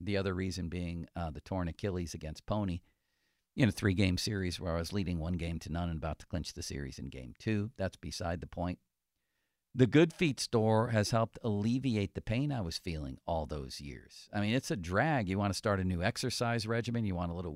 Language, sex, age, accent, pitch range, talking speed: English, male, 50-69, American, 85-115 Hz, 230 wpm